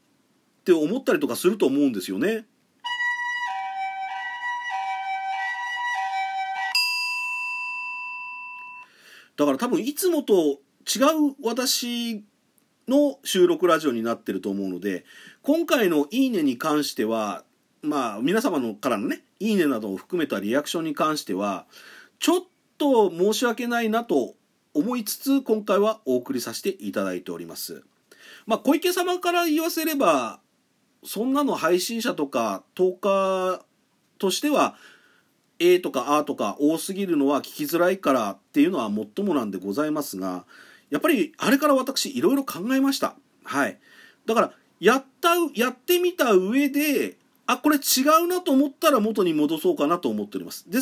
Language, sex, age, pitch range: Japanese, male, 40-59, 195-320 Hz